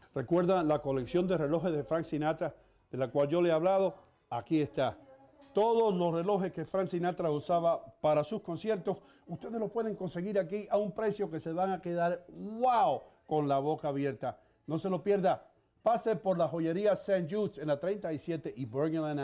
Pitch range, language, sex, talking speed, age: 155-205 Hz, English, male, 185 wpm, 50-69